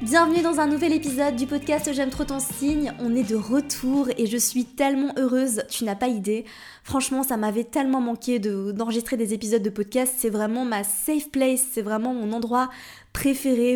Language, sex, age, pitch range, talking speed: French, female, 20-39, 210-255 Hz, 190 wpm